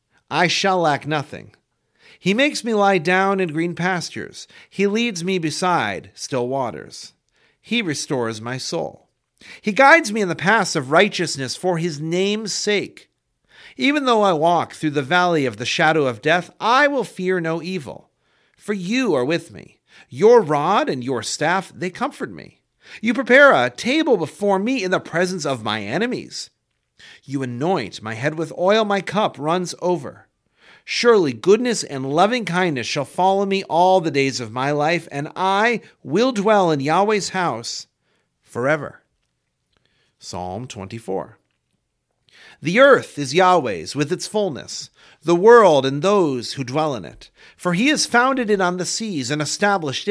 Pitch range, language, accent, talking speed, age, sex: 150-205 Hz, English, American, 160 wpm, 40-59, male